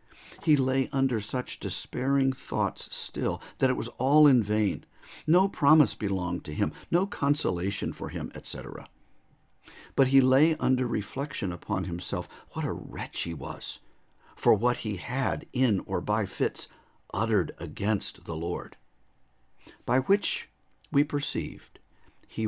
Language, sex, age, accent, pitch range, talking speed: English, male, 50-69, American, 100-135 Hz, 140 wpm